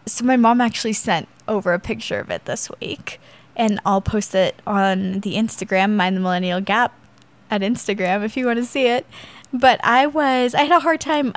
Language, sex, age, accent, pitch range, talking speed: English, female, 10-29, American, 205-250 Hz, 205 wpm